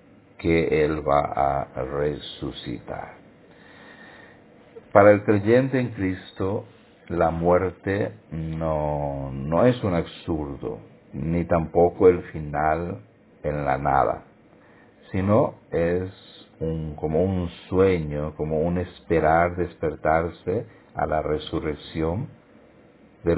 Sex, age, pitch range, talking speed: male, 50-69, 80-95 Hz, 95 wpm